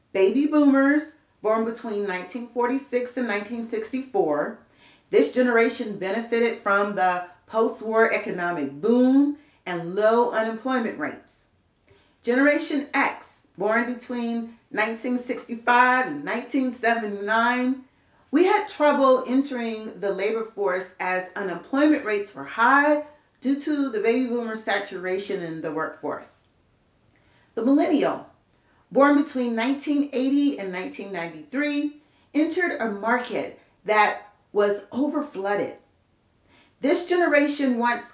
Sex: female